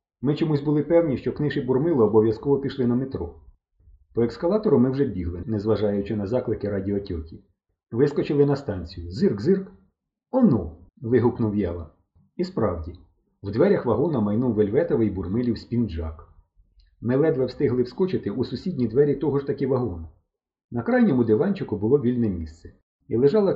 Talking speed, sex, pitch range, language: 145 wpm, male, 90-140 Hz, Ukrainian